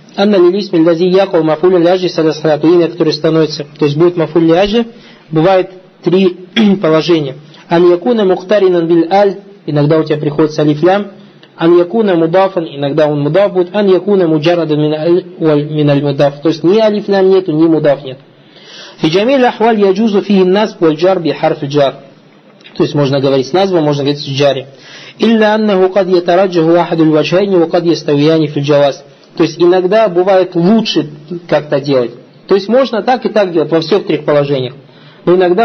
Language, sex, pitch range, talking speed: Russian, male, 155-190 Hz, 90 wpm